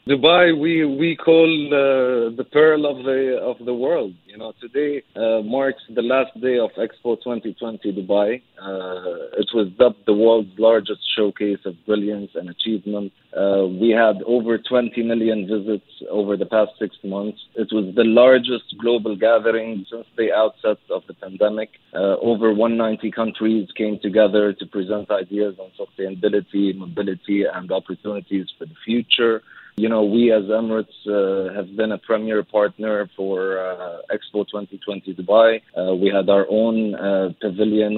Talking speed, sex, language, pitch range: 160 wpm, male, English, 100-115 Hz